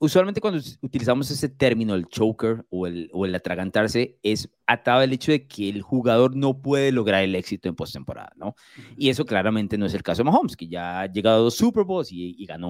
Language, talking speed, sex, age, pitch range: Spanish, 225 wpm, male, 30-49, 110-150 Hz